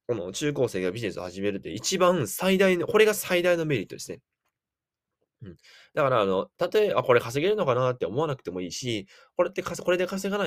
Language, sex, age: Japanese, male, 20-39